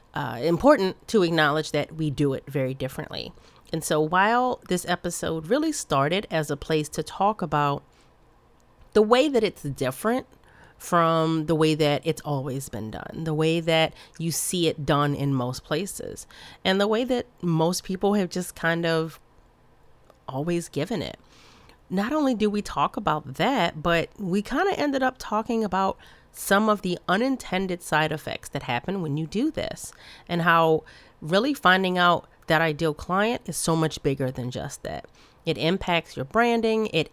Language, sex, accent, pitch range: English, female, American, 155-195 Hz